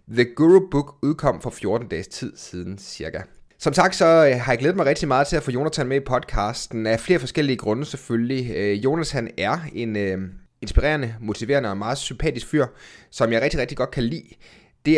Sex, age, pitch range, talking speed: male, 30-49, 110-140 Hz, 200 wpm